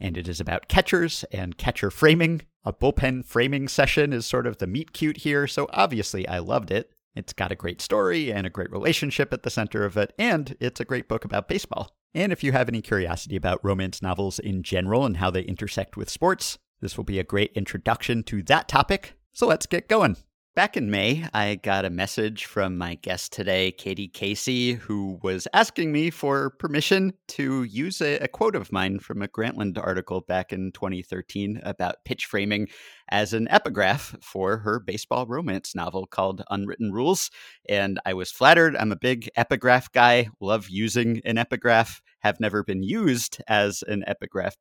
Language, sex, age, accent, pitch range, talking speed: English, male, 50-69, American, 95-125 Hz, 190 wpm